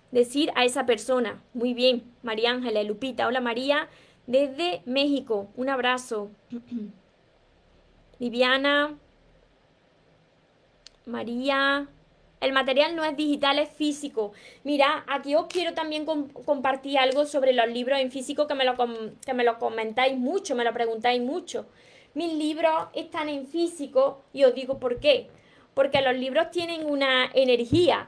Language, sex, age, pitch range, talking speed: Spanish, female, 20-39, 245-295 Hz, 140 wpm